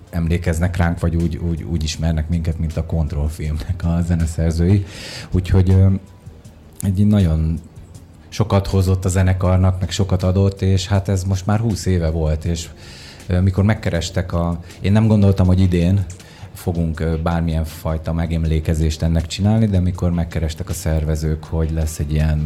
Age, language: 30-49, Hungarian